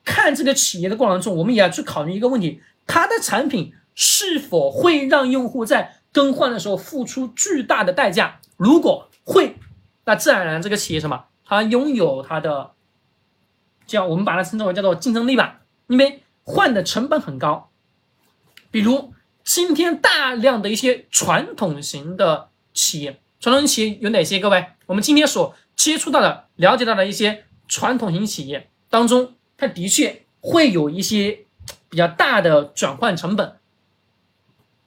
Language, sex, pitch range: Chinese, male, 190-280 Hz